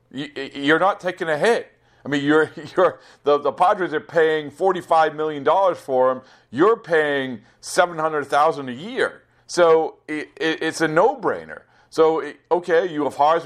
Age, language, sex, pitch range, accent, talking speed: 40-59, English, male, 120-160 Hz, American, 175 wpm